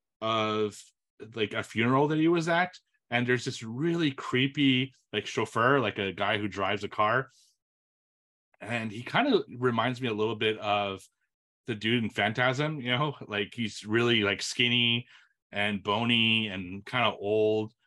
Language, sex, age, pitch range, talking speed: English, male, 30-49, 110-135 Hz, 165 wpm